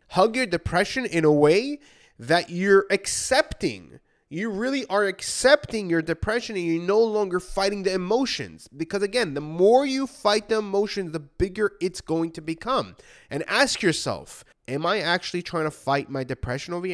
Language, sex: English, male